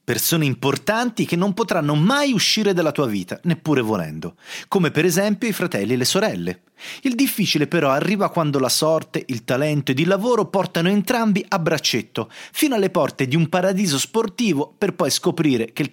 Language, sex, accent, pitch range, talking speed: Italian, male, native, 125-190 Hz, 180 wpm